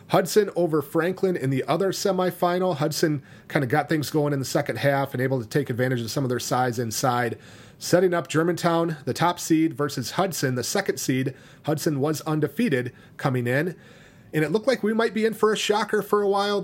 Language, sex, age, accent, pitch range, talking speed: English, male, 30-49, American, 130-170 Hz, 210 wpm